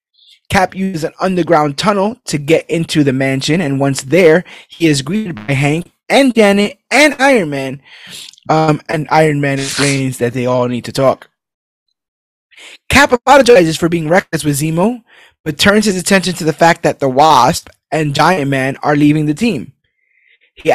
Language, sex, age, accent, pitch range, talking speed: English, male, 20-39, American, 150-195 Hz, 170 wpm